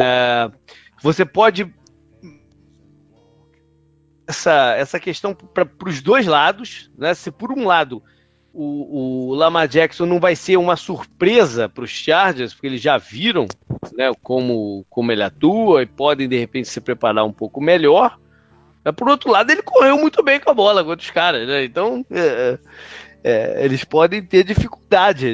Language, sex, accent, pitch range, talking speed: Portuguese, male, Brazilian, 120-185 Hz, 155 wpm